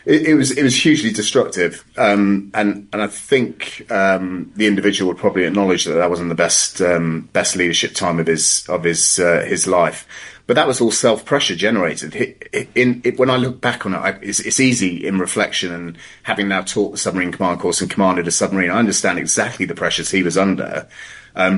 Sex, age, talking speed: male, 30-49, 205 wpm